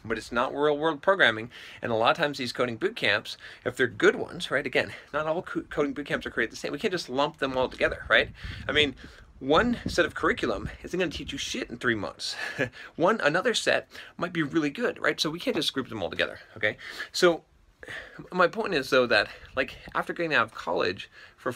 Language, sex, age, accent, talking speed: English, male, 30-49, American, 230 wpm